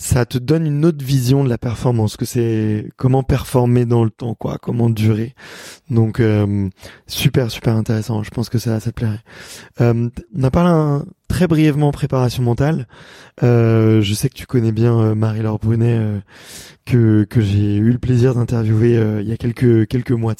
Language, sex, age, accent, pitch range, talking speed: French, male, 20-39, French, 115-135 Hz, 190 wpm